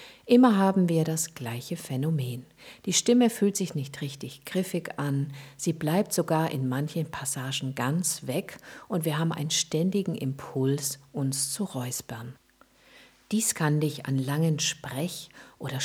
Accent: German